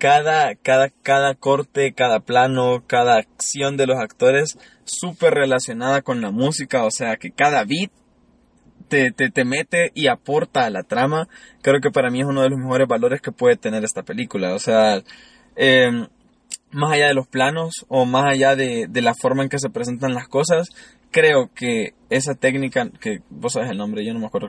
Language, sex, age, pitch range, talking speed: Spanish, male, 20-39, 125-170 Hz, 195 wpm